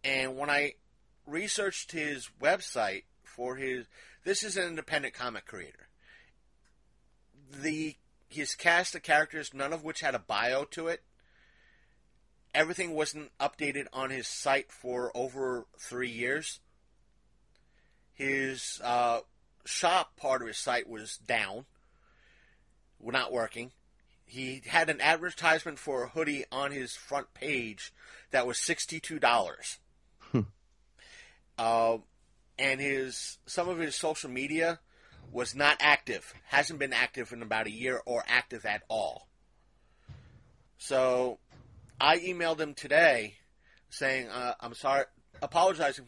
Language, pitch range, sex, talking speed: English, 125-155 Hz, male, 120 wpm